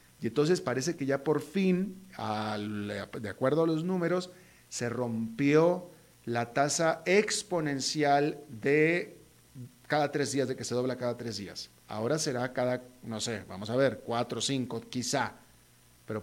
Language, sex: Spanish, male